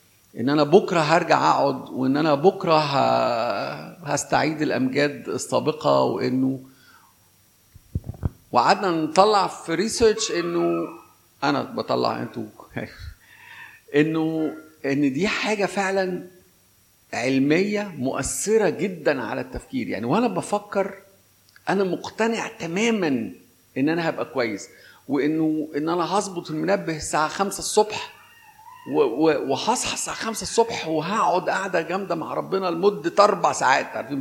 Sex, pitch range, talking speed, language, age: male, 145-215 Hz, 105 wpm, Arabic, 50-69